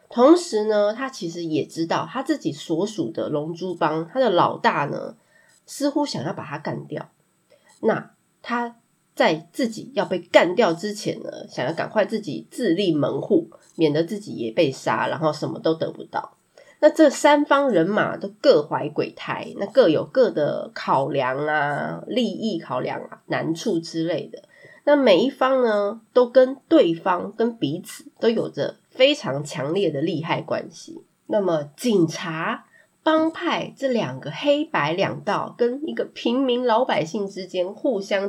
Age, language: 20-39, Chinese